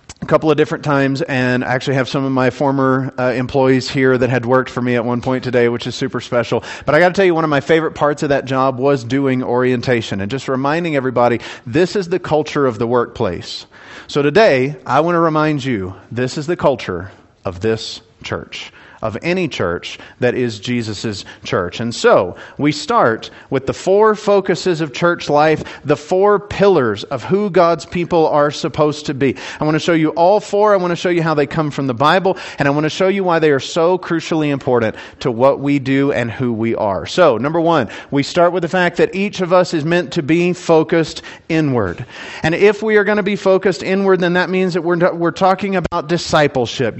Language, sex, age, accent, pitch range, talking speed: English, male, 40-59, American, 130-175 Hz, 225 wpm